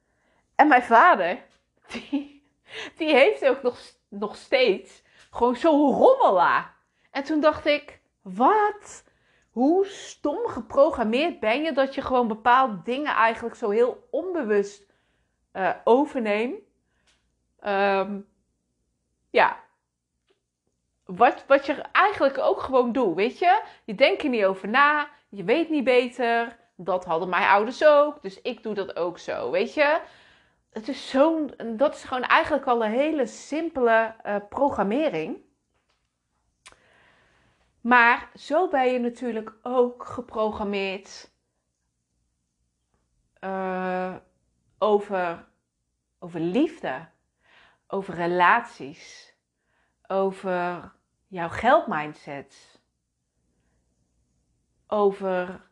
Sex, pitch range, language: female, 175-285 Hz, Dutch